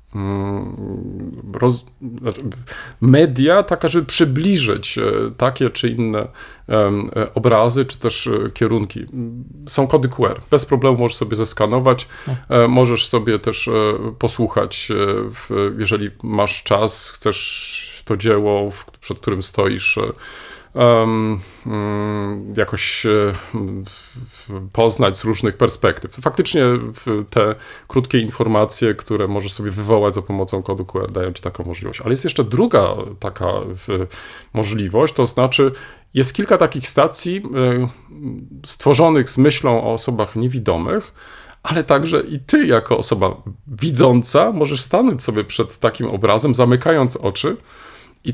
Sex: male